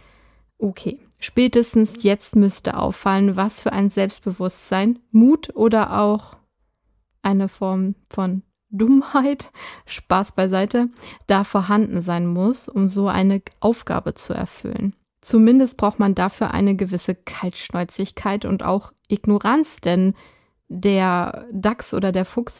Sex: female